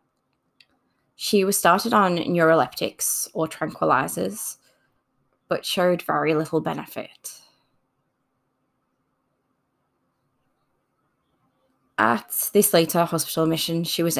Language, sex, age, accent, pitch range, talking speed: English, female, 20-39, British, 155-175 Hz, 80 wpm